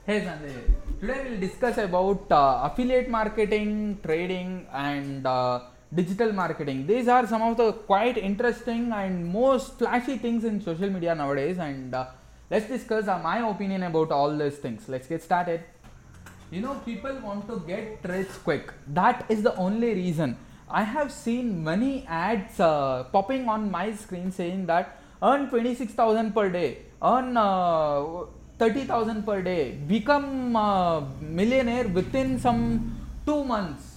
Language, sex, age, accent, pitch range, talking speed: English, male, 20-39, Indian, 170-235 Hz, 155 wpm